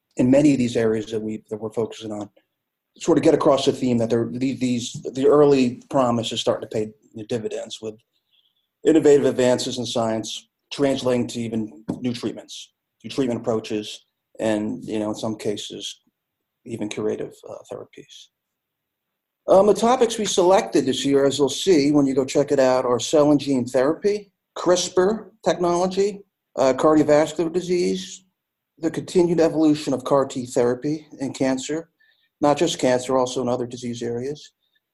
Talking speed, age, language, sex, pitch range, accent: 160 wpm, 40-59, English, male, 120-160 Hz, American